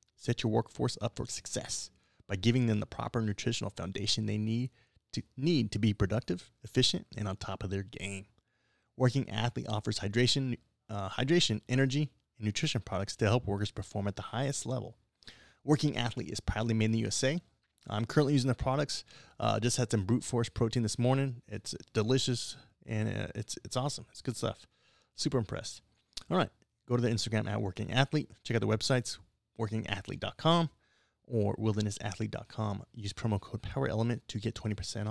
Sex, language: male, English